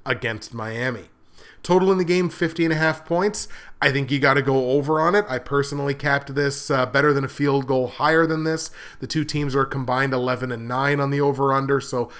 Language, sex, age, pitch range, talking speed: English, male, 30-49, 130-150 Hz, 225 wpm